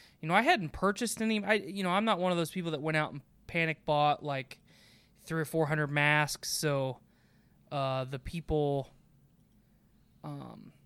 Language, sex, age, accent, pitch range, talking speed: English, male, 20-39, American, 145-185 Hz, 175 wpm